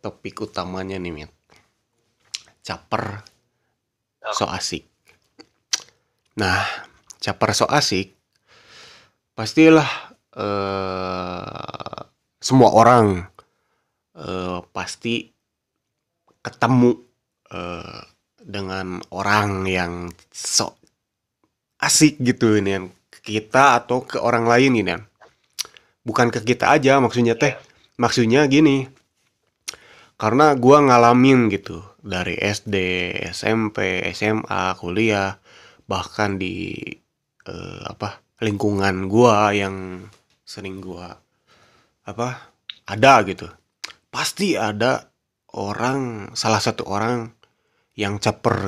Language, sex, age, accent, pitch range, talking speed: Indonesian, male, 20-39, native, 95-120 Hz, 85 wpm